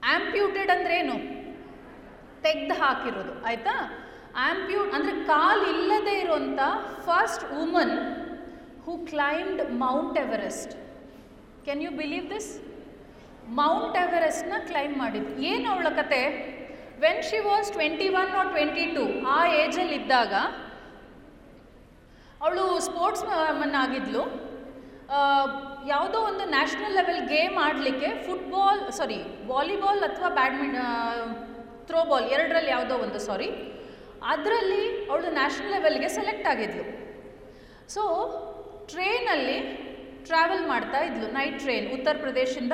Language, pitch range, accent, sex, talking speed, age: Kannada, 270-360 Hz, native, female, 100 wpm, 30-49